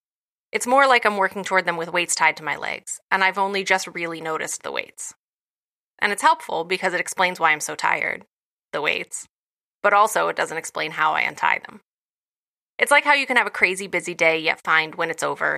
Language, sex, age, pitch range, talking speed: English, female, 20-39, 165-210 Hz, 220 wpm